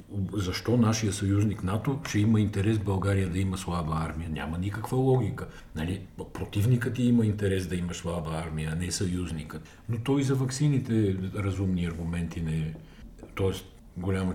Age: 50-69